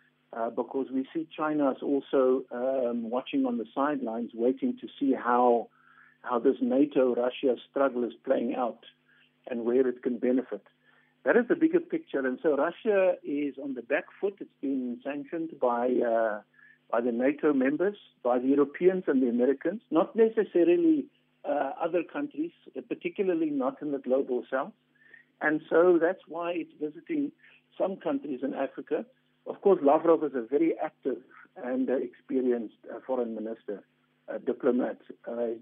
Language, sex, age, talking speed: English, male, 60-79, 160 wpm